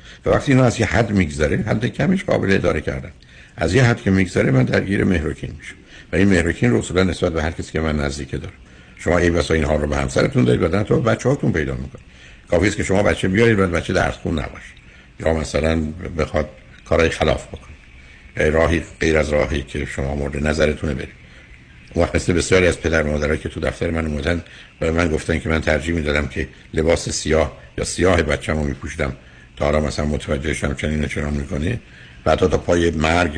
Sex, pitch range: male, 70-90 Hz